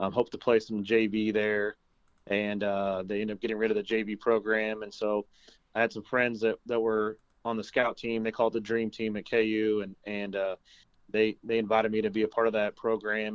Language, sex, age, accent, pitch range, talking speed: English, male, 30-49, American, 100-115 Hz, 235 wpm